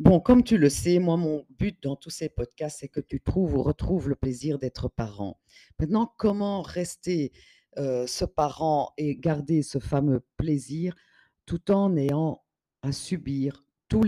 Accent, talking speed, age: French, 165 wpm, 50-69